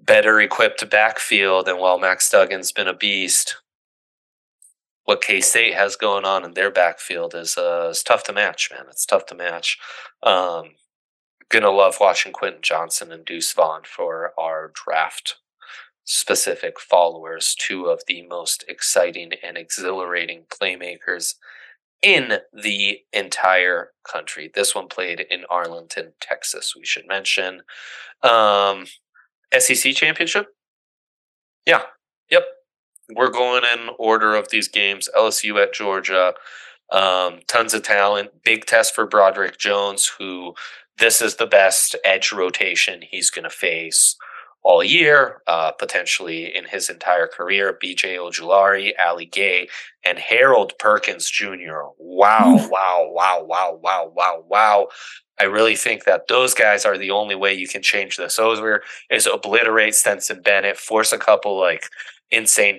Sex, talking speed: male, 140 wpm